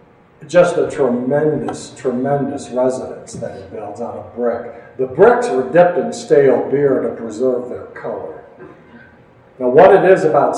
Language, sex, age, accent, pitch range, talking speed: English, male, 60-79, American, 130-170 Hz, 155 wpm